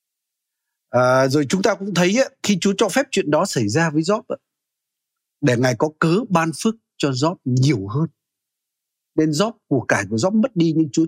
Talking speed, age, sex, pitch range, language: 195 wpm, 60-79, male, 115-165 Hz, Vietnamese